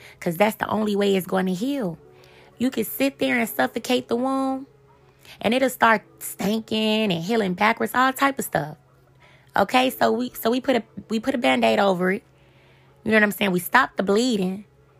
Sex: female